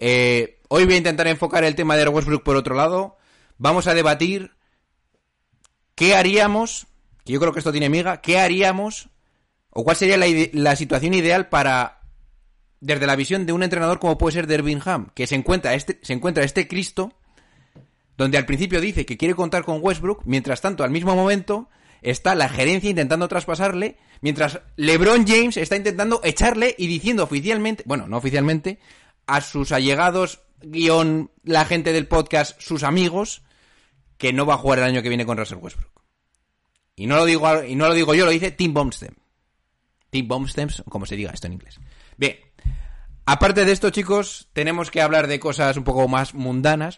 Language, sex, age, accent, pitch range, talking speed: Spanish, male, 30-49, Spanish, 125-180 Hz, 180 wpm